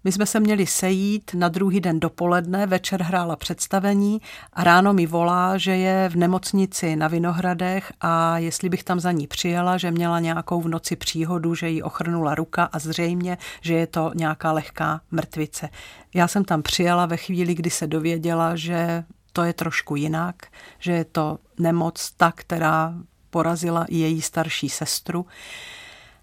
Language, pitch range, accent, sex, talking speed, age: Czech, 165-190 Hz, native, female, 165 wpm, 50-69